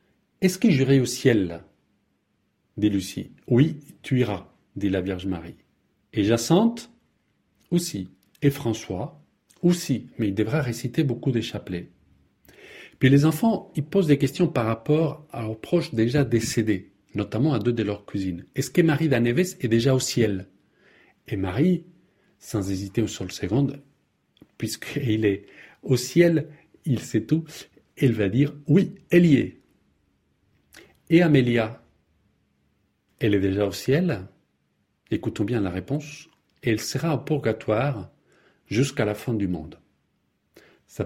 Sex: male